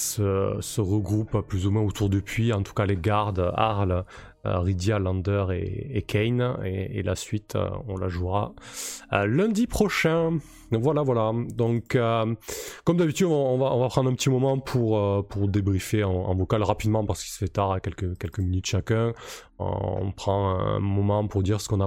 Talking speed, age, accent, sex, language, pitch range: 210 wpm, 20-39, French, male, French, 100-135 Hz